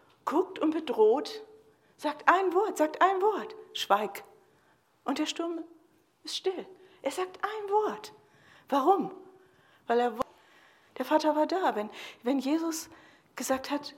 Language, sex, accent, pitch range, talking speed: German, female, German, 245-305 Hz, 135 wpm